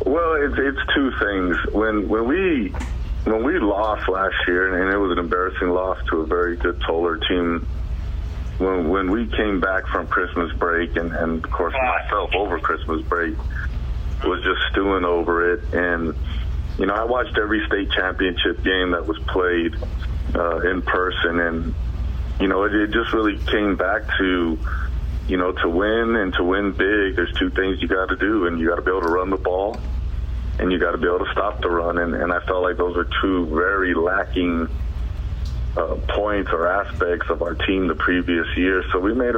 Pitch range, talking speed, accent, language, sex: 80-95 Hz, 195 wpm, American, English, male